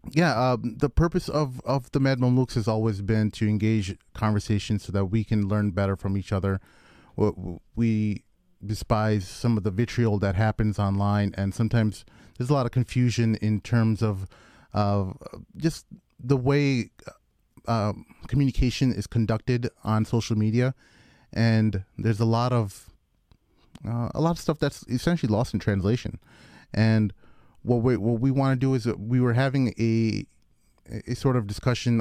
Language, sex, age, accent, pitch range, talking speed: English, male, 30-49, American, 105-120 Hz, 160 wpm